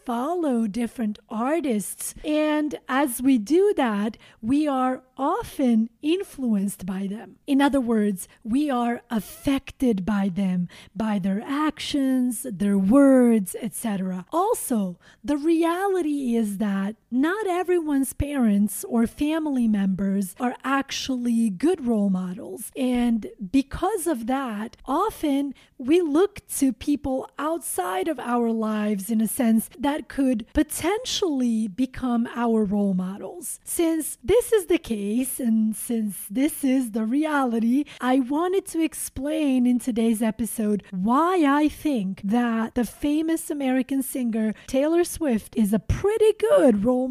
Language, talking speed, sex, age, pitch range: English, 125 wpm, female, 30-49, 225-295 Hz